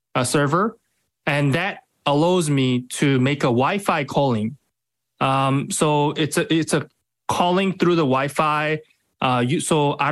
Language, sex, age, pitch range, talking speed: English, male, 20-39, 130-170 Hz, 150 wpm